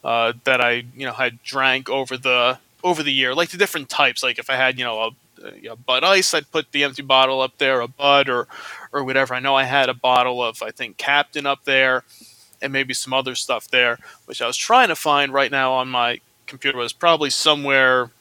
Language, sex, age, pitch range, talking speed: English, male, 20-39, 125-140 Hz, 235 wpm